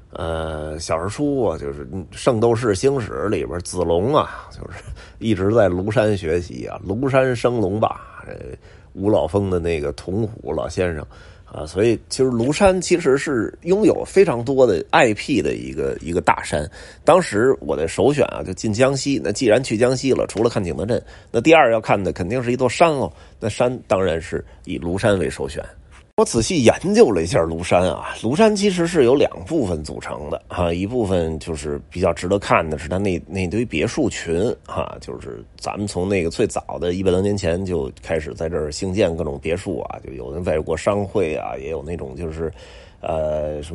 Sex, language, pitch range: male, Chinese, 85-120 Hz